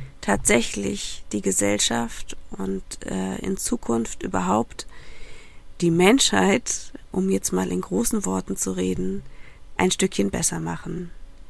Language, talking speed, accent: German, 115 wpm, German